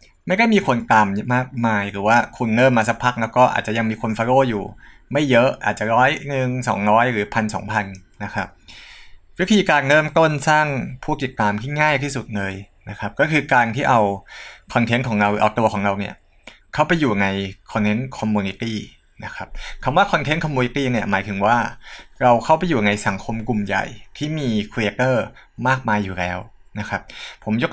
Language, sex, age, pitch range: Thai, male, 20-39, 105-130 Hz